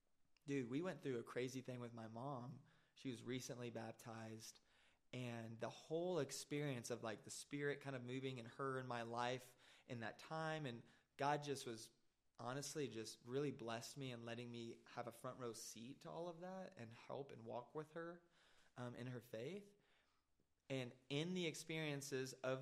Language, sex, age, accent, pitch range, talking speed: English, male, 20-39, American, 120-145 Hz, 185 wpm